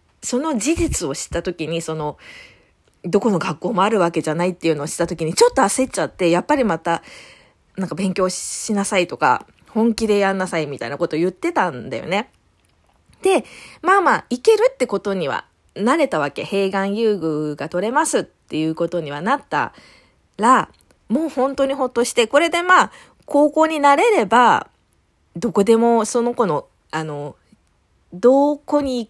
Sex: female